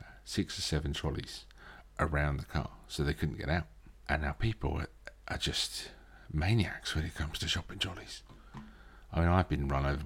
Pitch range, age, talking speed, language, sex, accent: 75-95 Hz, 40-59, 180 wpm, English, male, British